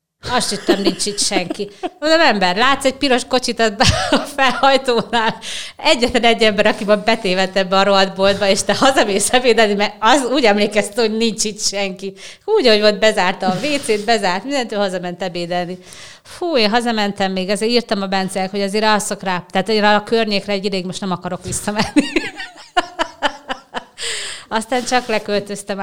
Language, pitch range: Hungarian, 180-220 Hz